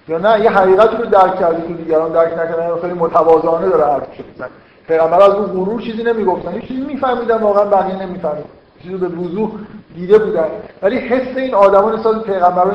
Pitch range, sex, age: 165-205 Hz, male, 50-69